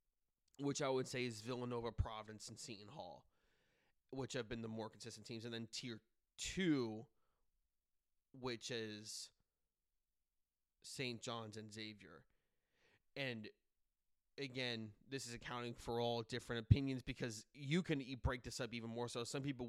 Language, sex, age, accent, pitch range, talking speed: English, male, 20-39, American, 110-125 Hz, 145 wpm